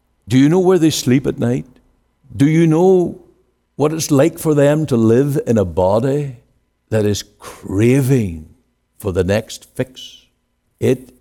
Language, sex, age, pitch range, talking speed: English, male, 60-79, 90-125 Hz, 155 wpm